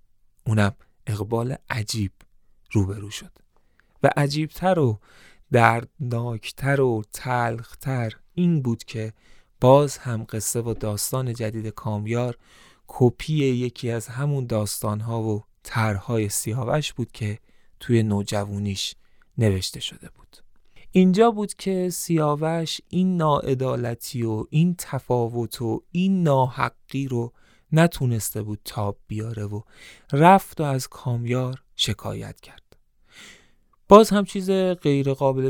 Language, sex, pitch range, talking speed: Persian, male, 110-140 Hz, 110 wpm